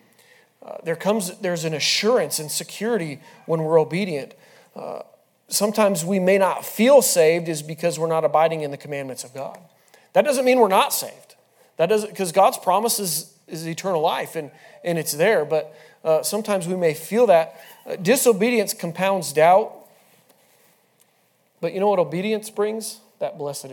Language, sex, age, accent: English, male, 40-59, American